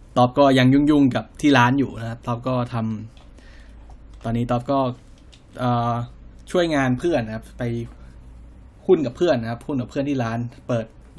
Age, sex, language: 10-29, male, Thai